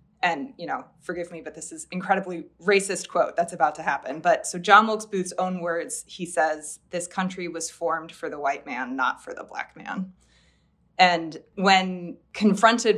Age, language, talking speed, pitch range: 20-39, English, 185 wpm, 170-200 Hz